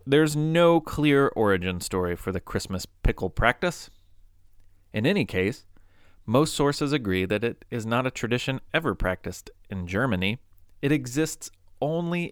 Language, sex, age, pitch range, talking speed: English, male, 30-49, 90-140 Hz, 140 wpm